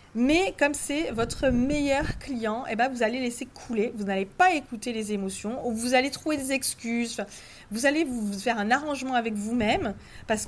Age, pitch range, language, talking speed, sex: 30-49, 215-270 Hz, French, 180 wpm, female